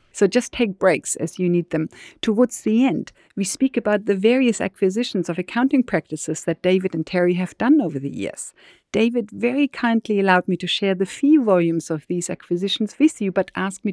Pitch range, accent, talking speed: 170-215 Hz, German, 200 wpm